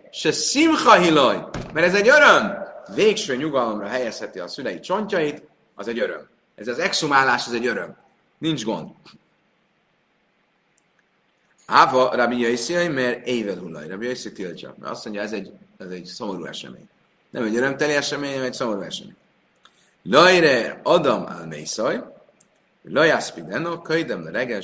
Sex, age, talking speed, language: male, 30-49, 130 wpm, Hungarian